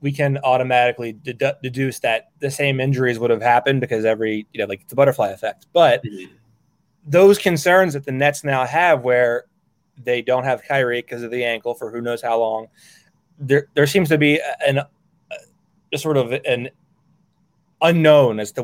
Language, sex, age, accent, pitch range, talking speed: English, male, 20-39, American, 120-155 Hz, 175 wpm